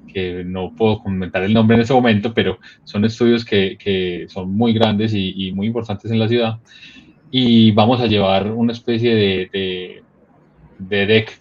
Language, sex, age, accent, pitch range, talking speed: Spanish, male, 20-39, Colombian, 100-120 Hz, 180 wpm